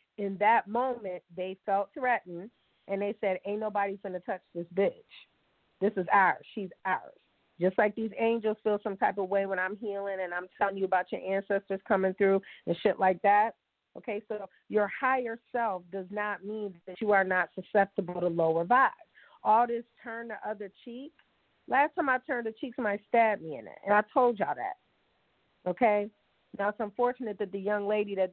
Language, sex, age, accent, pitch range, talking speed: English, female, 30-49, American, 185-215 Hz, 195 wpm